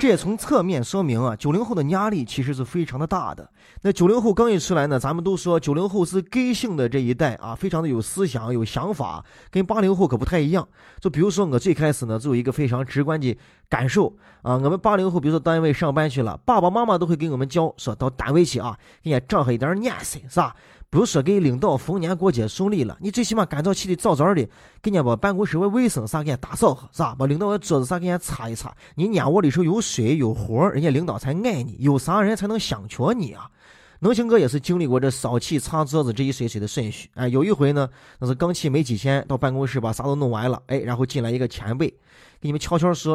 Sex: male